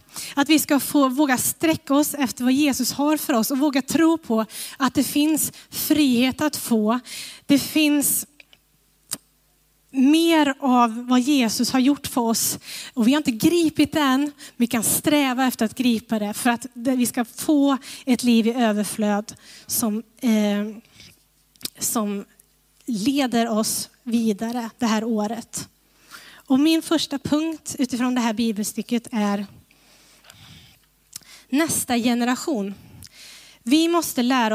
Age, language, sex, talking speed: 20-39, Swedish, female, 130 wpm